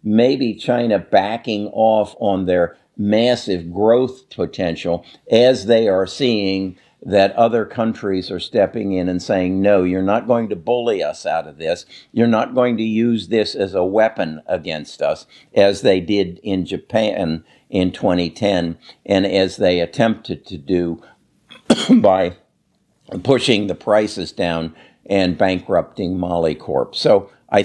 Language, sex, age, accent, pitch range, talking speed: English, male, 50-69, American, 90-110 Hz, 145 wpm